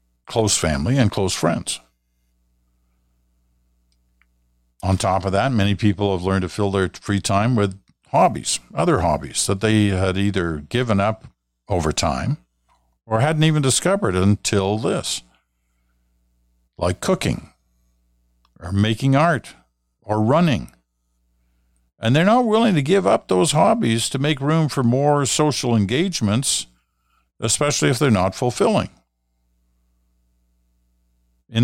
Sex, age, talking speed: male, 50-69, 125 wpm